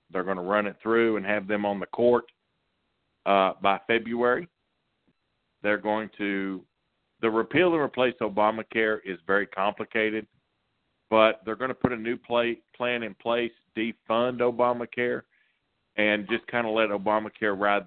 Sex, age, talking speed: male, 50-69, 150 wpm